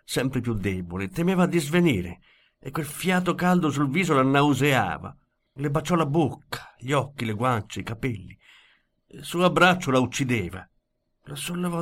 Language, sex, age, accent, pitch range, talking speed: Italian, male, 50-69, native, 115-165 Hz, 155 wpm